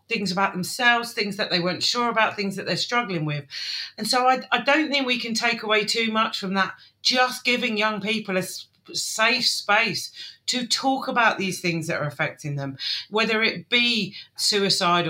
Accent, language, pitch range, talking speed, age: British, English, 180-225 Hz, 190 wpm, 40-59